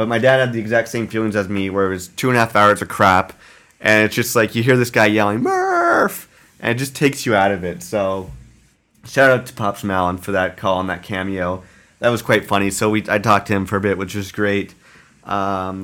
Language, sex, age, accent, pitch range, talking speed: English, male, 30-49, American, 100-120 Hz, 255 wpm